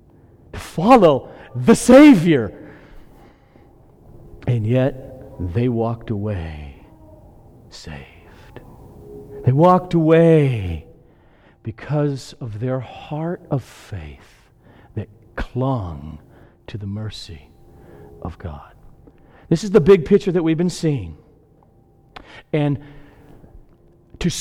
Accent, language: American, English